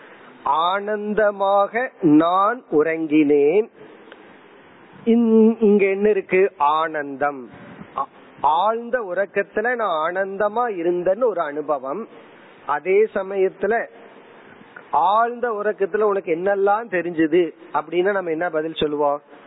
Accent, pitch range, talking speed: native, 160-215 Hz, 70 wpm